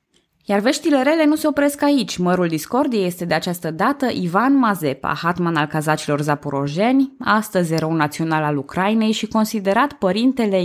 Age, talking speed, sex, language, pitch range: 20-39, 150 wpm, female, Romanian, 155-245 Hz